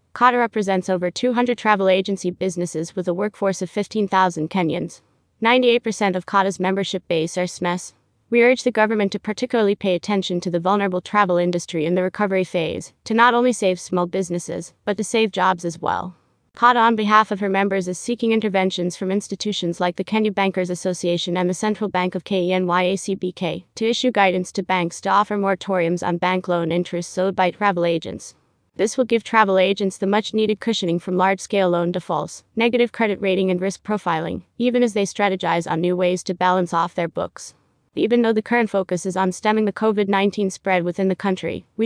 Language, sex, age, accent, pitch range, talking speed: English, female, 30-49, American, 180-215 Hz, 190 wpm